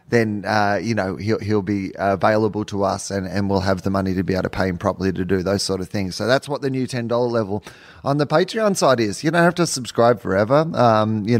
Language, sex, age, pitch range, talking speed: English, male, 30-49, 100-115 Hz, 265 wpm